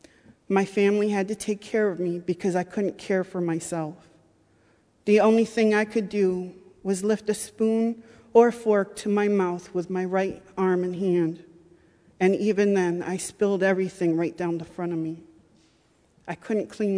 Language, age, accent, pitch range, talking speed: English, 40-59, American, 175-205 Hz, 175 wpm